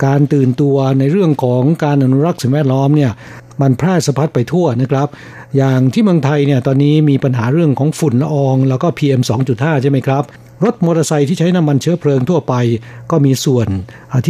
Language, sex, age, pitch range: Thai, male, 60-79, 135-165 Hz